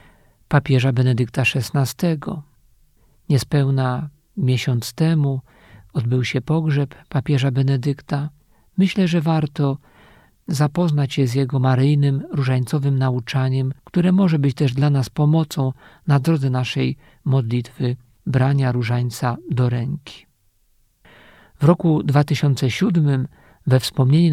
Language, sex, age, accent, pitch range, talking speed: Polish, male, 50-69, native, 130-160 Hz, 100 wpm